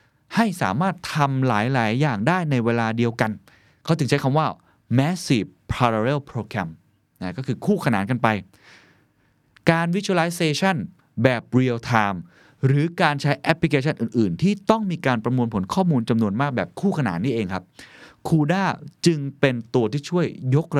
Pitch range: 110-150 Hz